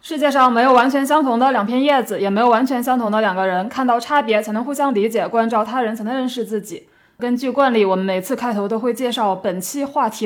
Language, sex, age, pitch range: Chinese, female, 20-39, 195-250 Hz